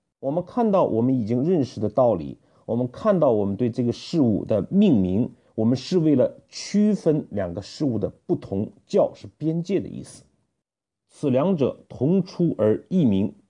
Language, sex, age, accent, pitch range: Chinese, male, 50-69, native, 115-180 Hz